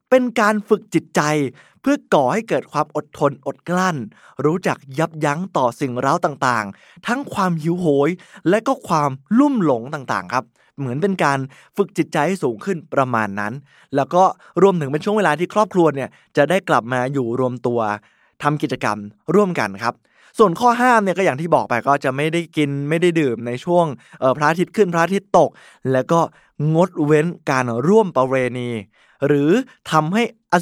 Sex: male